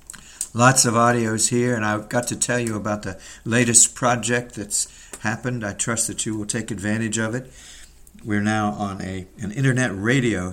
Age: 60-79